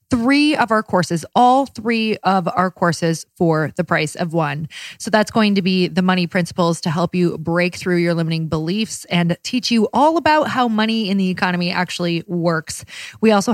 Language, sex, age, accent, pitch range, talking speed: English, female, 20-39, American, 170-210 Hz, 195 wpm